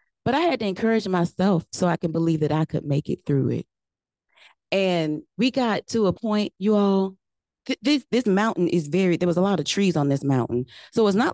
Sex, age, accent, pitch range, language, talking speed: female, 30-49, American, 155-205 Hz, English, 230 wpm